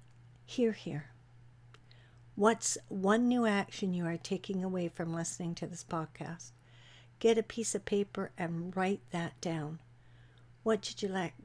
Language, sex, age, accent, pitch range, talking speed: English, female, 60-79, American, 150-200 Hz, 145 wpm